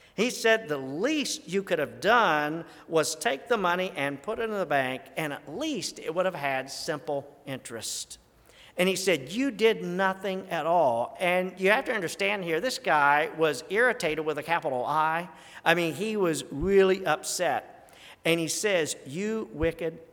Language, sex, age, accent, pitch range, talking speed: English, male, 50-69, American, 155-190 Hz, 180 wpm